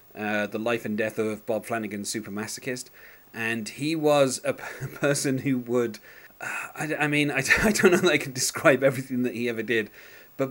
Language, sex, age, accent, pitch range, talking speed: English, male, 30-49, British, 105-135 Hz, 215 wpm